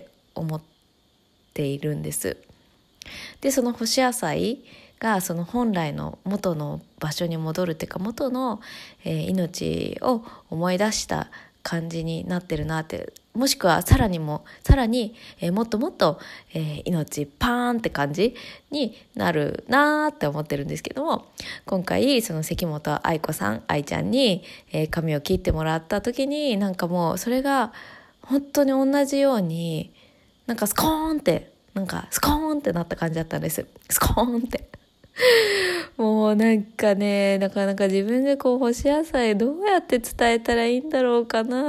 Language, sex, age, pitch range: Japanese, female, 20-39, 175-250 Hz